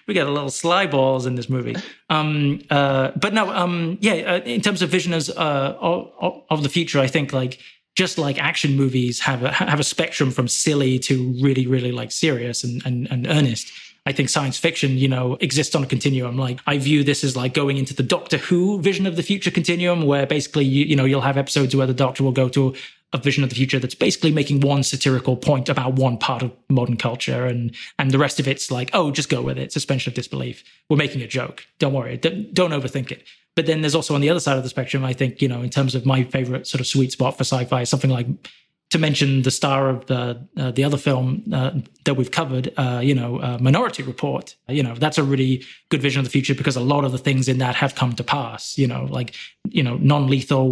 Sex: male